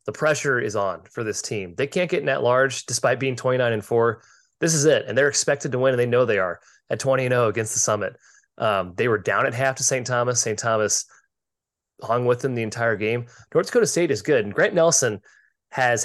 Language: English